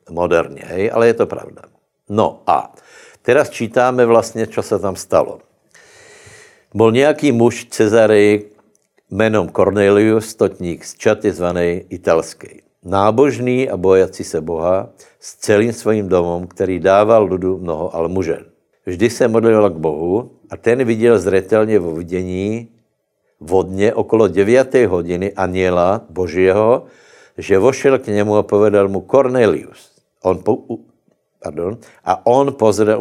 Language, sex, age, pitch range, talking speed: Slovak, male, 60-79, 95-110 Hz, 130 wpm